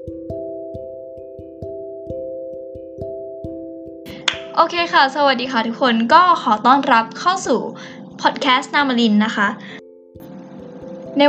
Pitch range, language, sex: 215-275 Hz, Thai, female